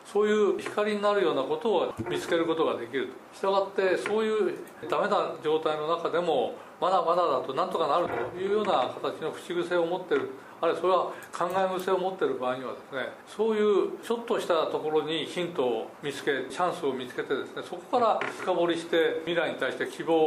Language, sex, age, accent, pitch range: Japanese, male, 40-59, native, 165-220 Hz